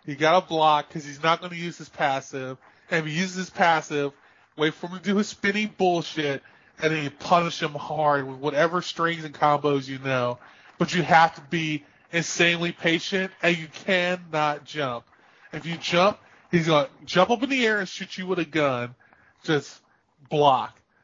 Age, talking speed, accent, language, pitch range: 20-39, 190 wpm, American, English, 155-190 Hz